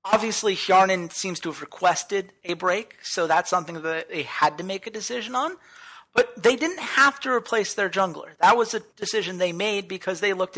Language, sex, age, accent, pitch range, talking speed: English, male, 30-49, American, 155-205 Hz, 205 wpm